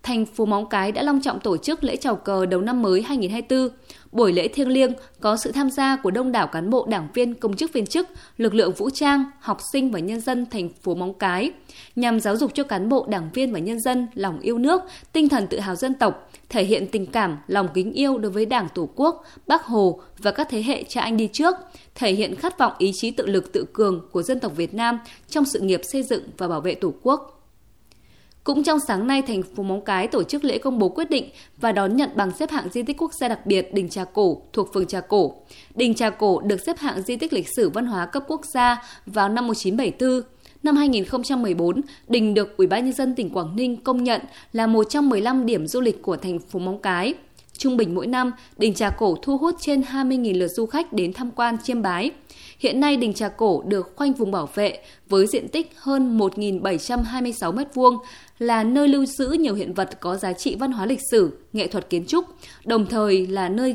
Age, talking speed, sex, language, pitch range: 20-39, 230 wpm, female, Vietnamese, 200-270 Hz